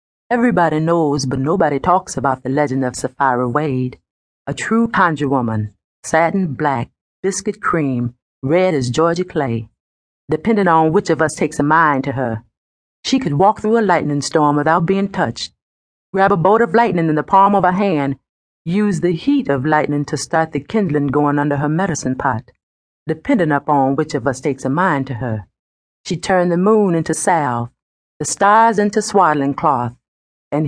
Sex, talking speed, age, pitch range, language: female, 175 wpm, 40-59, 130-180 Hz, English